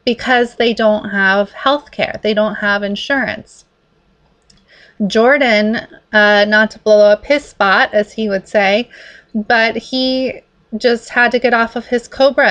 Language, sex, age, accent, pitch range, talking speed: English, female, 30-49, American, 205-245 Hz, 155 wpm